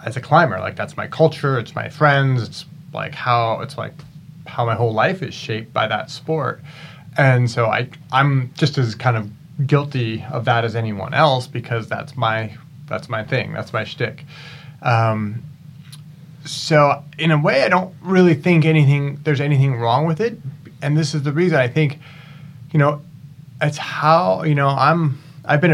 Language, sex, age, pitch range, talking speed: English, male, 30-49, 120-150 Hz, 180 wpm